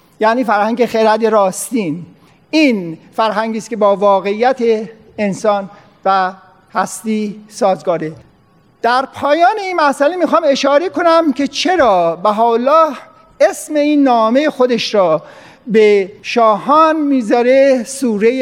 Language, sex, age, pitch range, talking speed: Persian, male, 50-69, 215-280 Hz, 110 wpm